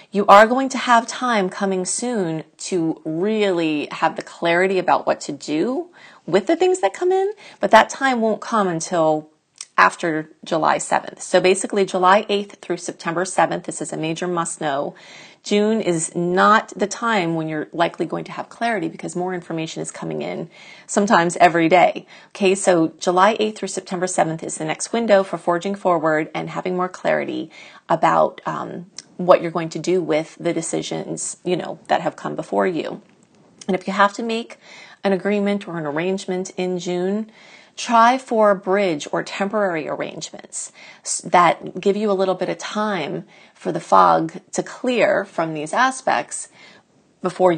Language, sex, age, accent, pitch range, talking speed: English, female, 30-49, American, 170-210 Hz, 175 wpm